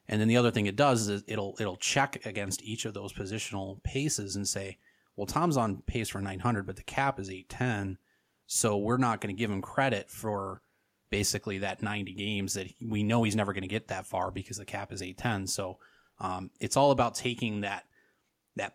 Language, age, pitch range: English, 30-49, 95-110 Hz